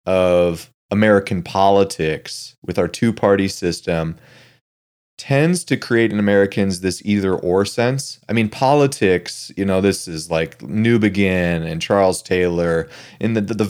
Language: English